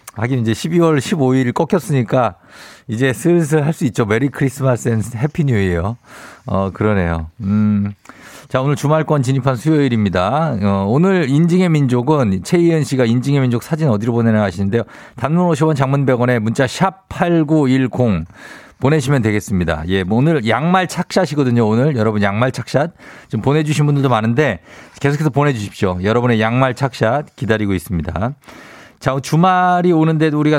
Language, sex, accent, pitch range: Korean, male, native, 110-150 Hz